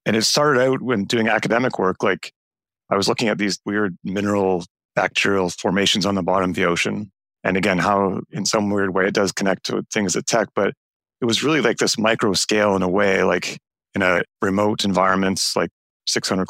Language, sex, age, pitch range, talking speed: English, male, 30-49, 95-105 Hz, 205 wpm